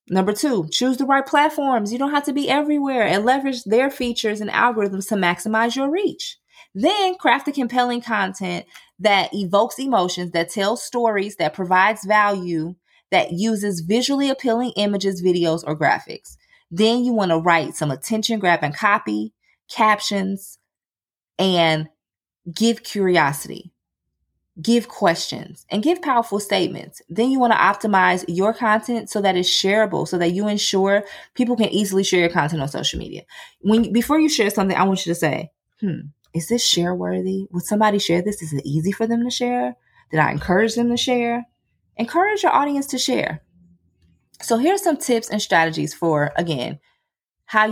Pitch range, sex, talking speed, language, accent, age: 175-240 Hz, female, 170 wpm, English, American, 20-39